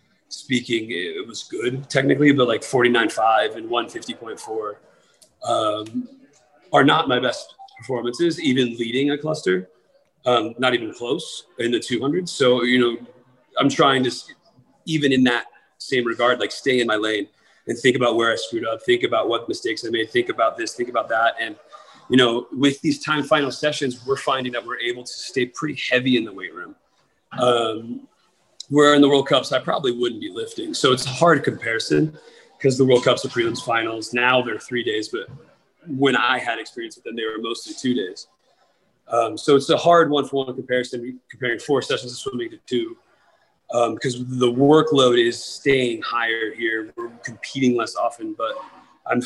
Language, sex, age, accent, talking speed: English, male, 30-49, American, 185 wpm